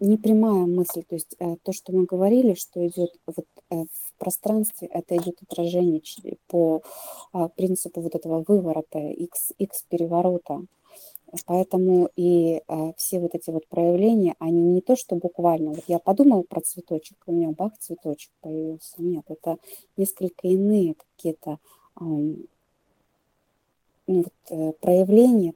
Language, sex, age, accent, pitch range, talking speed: Russian, female, 20-39, native, 170-190 Hz, 125 wpm